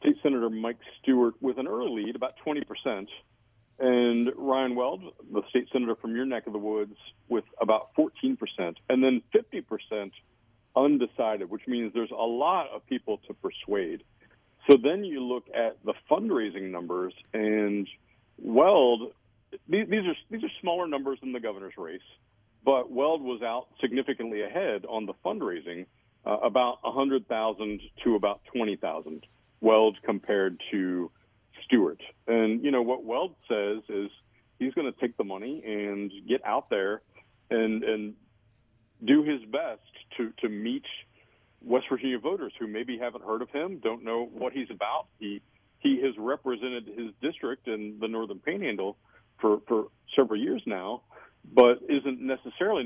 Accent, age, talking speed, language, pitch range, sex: American, 50-69, 155 wpm, English, 110-130 Hz, male